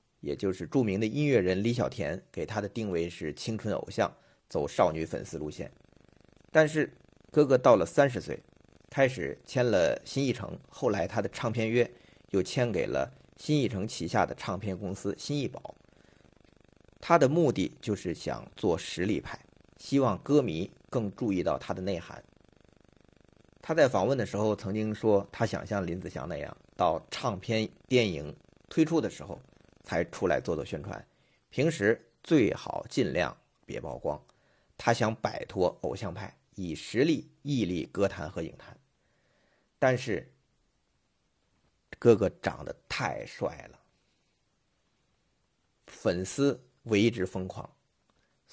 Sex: male